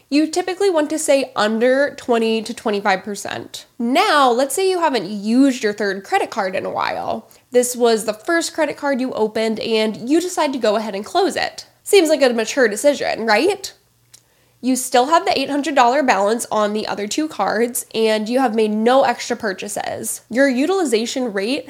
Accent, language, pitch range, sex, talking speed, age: American, English, 215-285 Hz, female, 185 wpm, 10-29